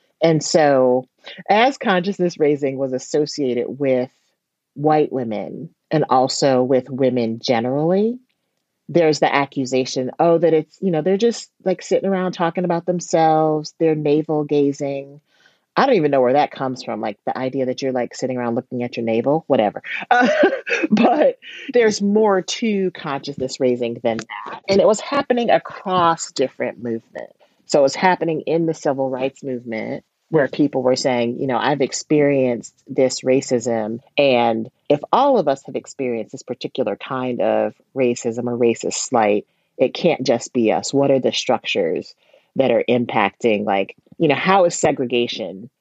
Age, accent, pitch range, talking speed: 40-59, American, 125-165 Hz, 160 wpm